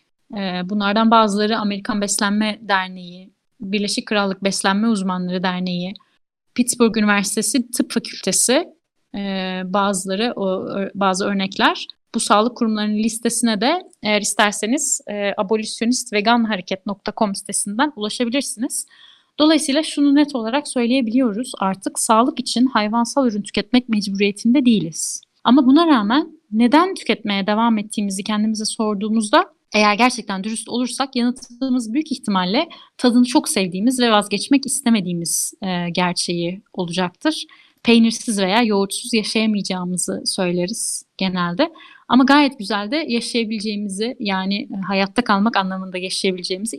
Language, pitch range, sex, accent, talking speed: Turkish, 200-255 Hz, female, native, 105 wpm